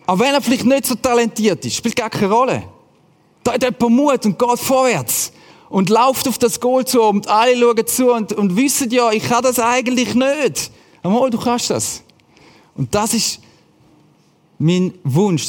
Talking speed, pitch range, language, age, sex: 185 wpm, 155-225 Hz, German, 40-59, male